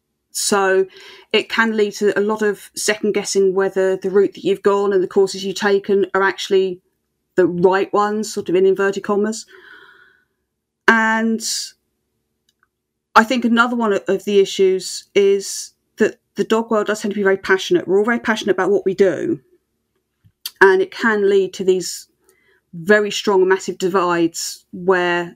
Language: English